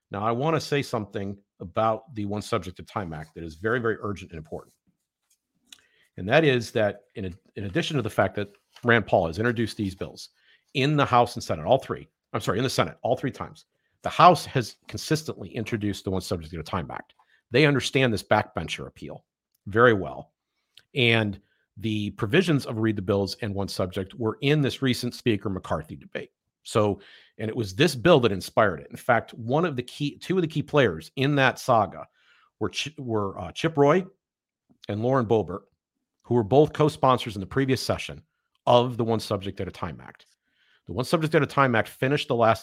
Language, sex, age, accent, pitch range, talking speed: English, male, 50-69, American, 100-135 Hz, 205 wpm